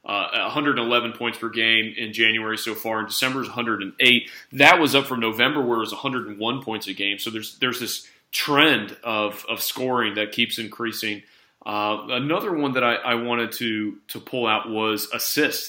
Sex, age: male, 30-49